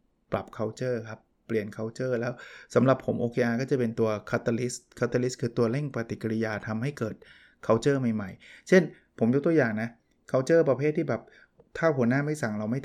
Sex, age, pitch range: male, 20-39, 110-140 Hz